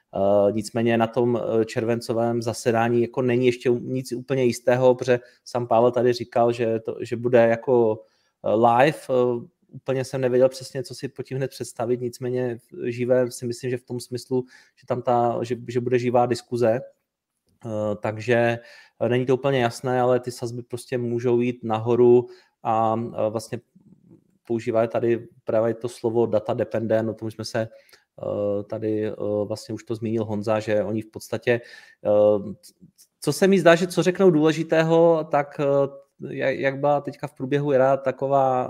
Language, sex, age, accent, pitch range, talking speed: Czech, male, 30-49, native, 115-130 Hz, 150 wpm